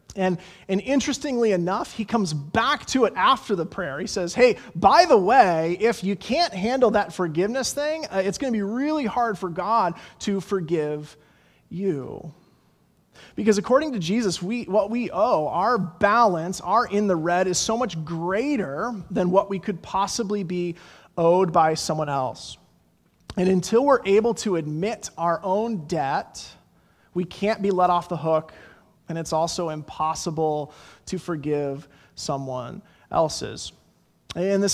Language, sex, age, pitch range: English, male, 30-49, 170-220 Hz